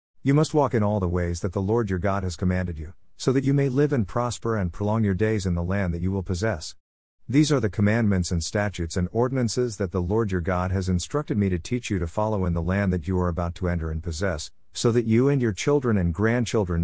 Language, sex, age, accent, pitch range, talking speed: English, male, 50-69, American, 90-115 Hz, 260 wpm